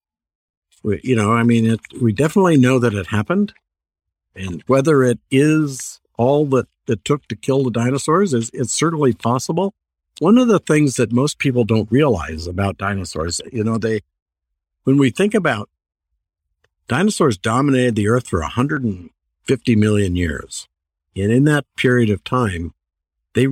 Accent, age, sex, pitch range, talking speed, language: American, 50-69, male, 90-130 Hz, 160 wpm, English